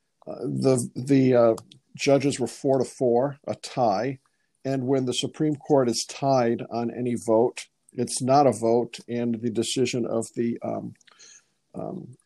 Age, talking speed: 50-69, 155 wpm